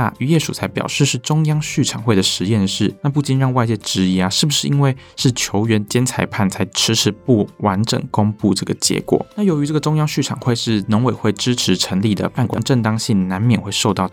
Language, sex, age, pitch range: Chinese, male, 20-39, 100-135 Hz